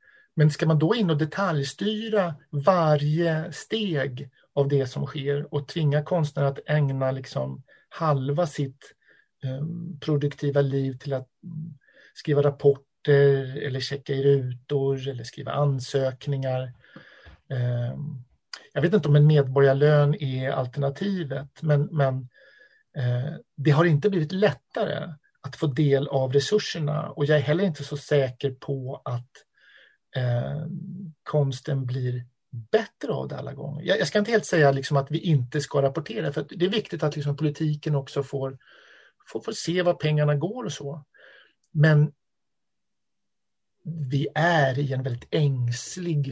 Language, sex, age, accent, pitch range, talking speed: Swedish, male, 50-69, native, 135-160 Hz, 135 wpm